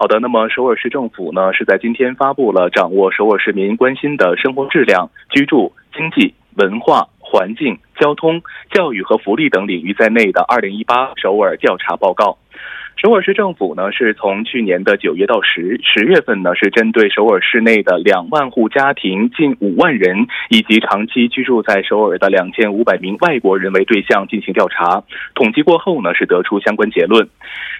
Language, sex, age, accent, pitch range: Korean, male, 20-39, Chinese, 105-160 Hz